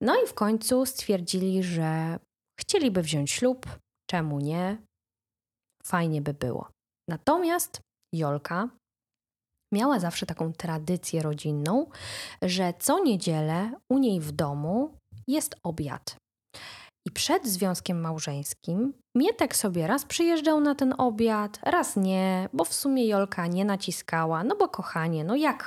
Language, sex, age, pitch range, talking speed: Polish, female, 20-39, 160-245 Hz, 125 wpm